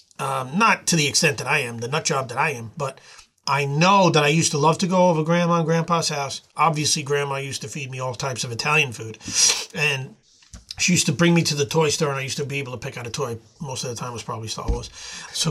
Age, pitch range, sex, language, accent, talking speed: 30-49, 135-170 Hz, male, English, American, 275 wpm